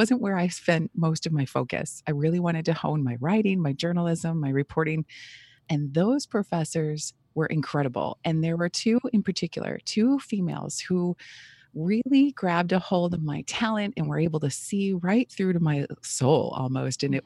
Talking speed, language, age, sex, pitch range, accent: 185 wpm, English, 30-49, female, 145-190 Hz, American